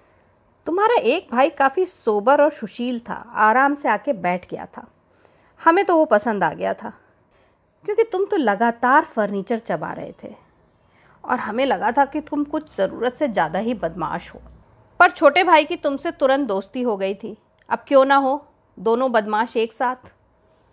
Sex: female